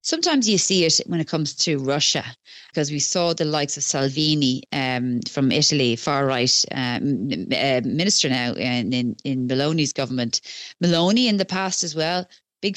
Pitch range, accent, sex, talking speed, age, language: 140-165 Hz, Irish, female, 165 wpm, 30-49, English